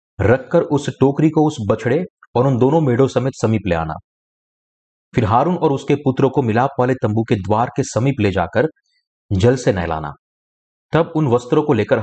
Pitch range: 100-140 Hz